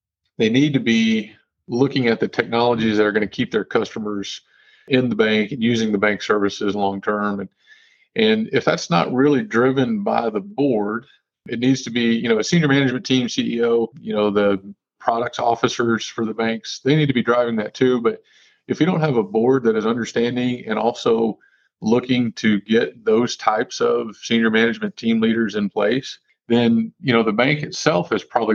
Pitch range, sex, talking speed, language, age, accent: 105-125 Hz, male, 195 wpm, English, 40-59, American